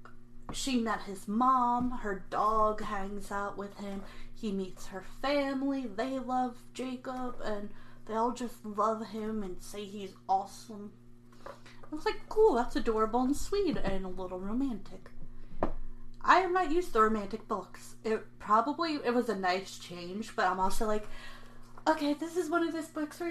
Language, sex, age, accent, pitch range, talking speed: English, female, 30-49, American, 185-260 Hz, 165 wpm